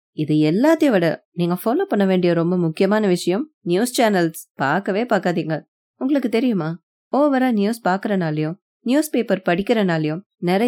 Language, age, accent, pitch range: Tamil, 20-39, native, 170-215 Hz